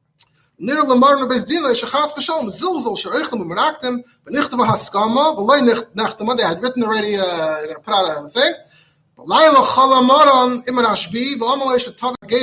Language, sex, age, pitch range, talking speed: English, male, 20-39, 180-245 Hz, 60 wpm